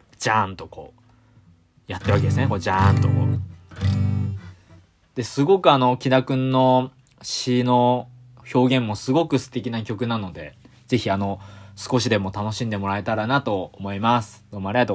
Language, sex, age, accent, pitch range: Japanese, male, 20-39, native, 100-130 Hz